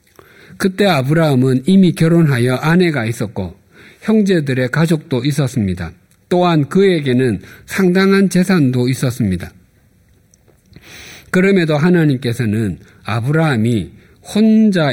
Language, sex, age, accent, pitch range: Korean, male, 50-69, native, 110-165 Hz